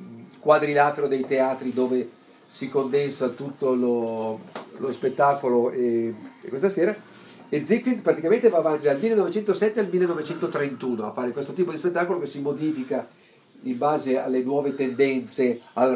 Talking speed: 145 wpm